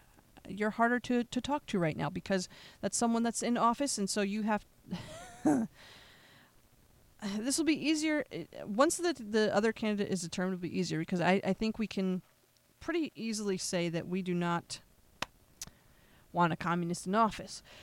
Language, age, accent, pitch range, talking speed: English, 30-49, American, 180-230 Hz, 170 wpm